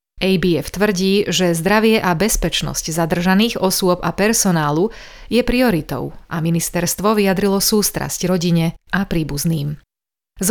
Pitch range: 170-205 Hz